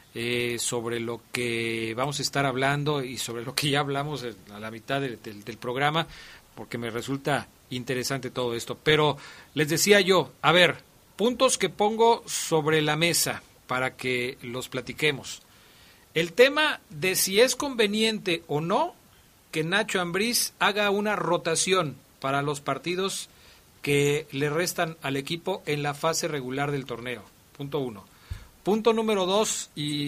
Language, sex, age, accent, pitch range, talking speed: Spanish, male, 40-59, Mexican, 130-185 Hz, 150 wpm